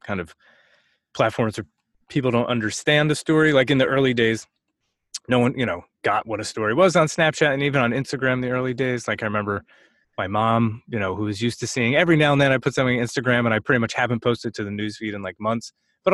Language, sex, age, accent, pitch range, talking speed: English, male, 30-49, American, 110-140 Hz, 255 wpm